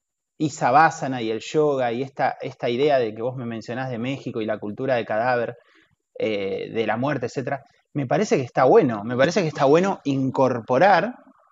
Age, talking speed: 20-39, 195 wpm